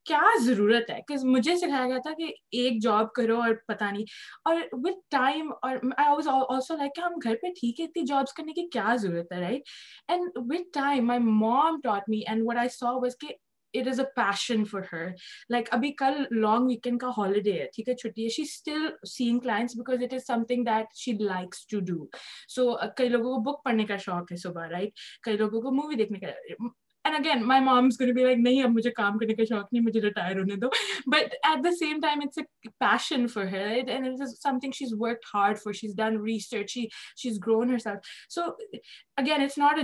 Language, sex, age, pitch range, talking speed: Urdu, female, 20-39, 220-270 Hz, 80 wpm